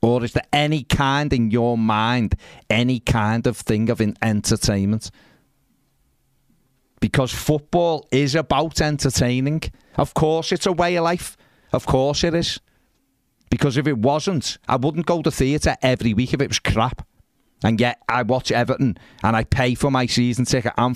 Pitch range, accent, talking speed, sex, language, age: 110-135 Hz, British, 165 wpm, male, English, 40-59